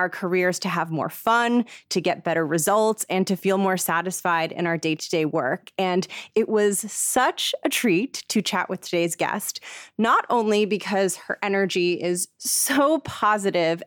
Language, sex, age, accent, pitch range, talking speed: English, female, 20-39, American, 175-210 Hz, 165 wpm